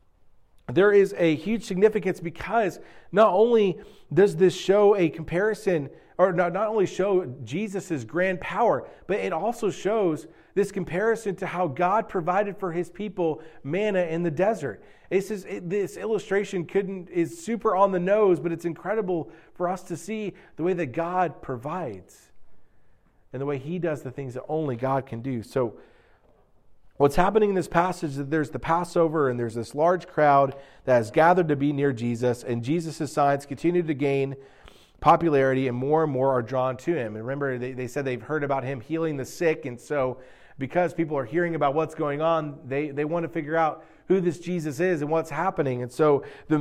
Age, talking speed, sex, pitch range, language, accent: 40-59, 190 wpm, male, 140-185 Hz, English, American